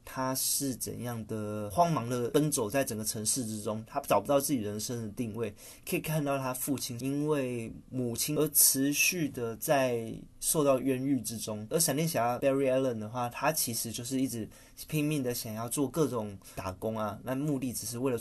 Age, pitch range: 20-39, 110-140 Hz